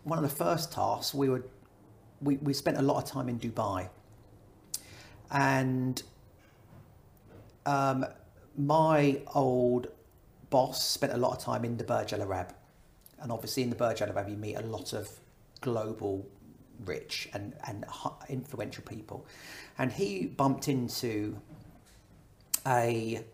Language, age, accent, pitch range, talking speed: English, 40-59, British, 105-140 Hz, 135 wpm